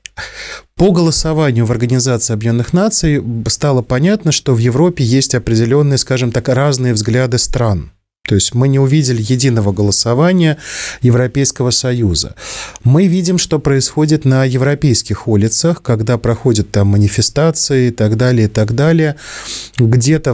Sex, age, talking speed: male, 30-49, 135 wpm